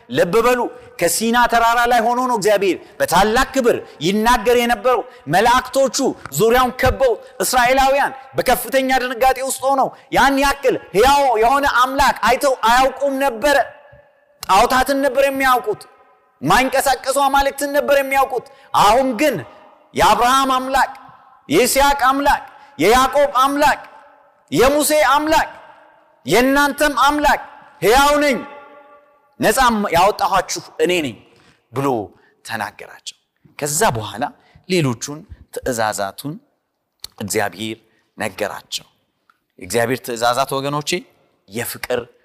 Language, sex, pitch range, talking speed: Amharic, male, 200-280 Hz, 90 wpm